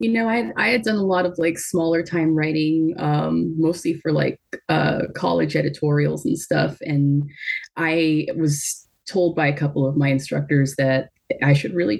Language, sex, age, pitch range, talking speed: English, female, 20-39, 135-155 Hz, 180 wpm